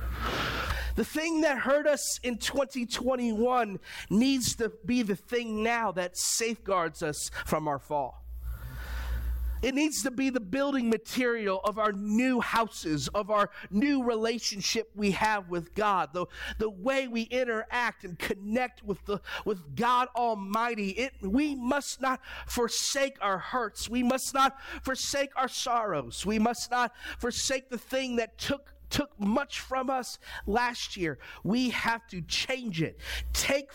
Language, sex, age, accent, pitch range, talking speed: English, male, 40-59, American, 175-245 Hz, 150 wpm